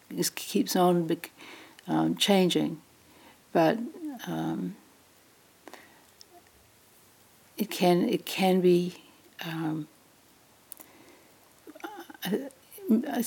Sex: female